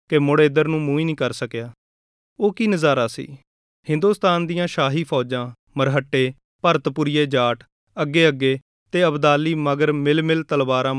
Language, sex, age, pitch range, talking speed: Punjabi, male, 30-49, 135-165 Hz, 140 wpm